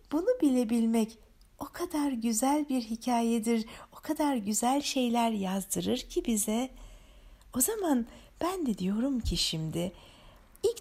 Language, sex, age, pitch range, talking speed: Turkish, female, 60-79, 195-260 Hz, 120 wpm